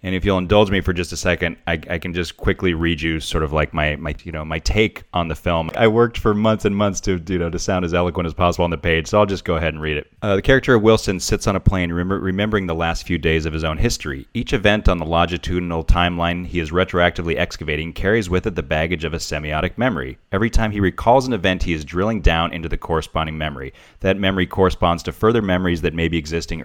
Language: English